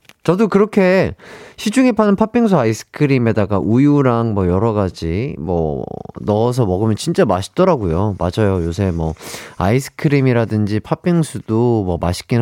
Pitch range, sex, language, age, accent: 105-165 Hz, male, Korean, 30-49, native